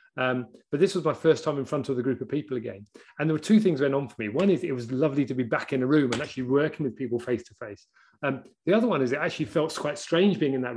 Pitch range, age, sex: 120-155 Hz, 30-49, male